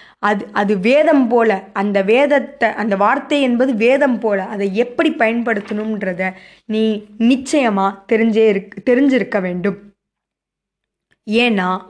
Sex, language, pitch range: female, Tamil, 200-255 Hz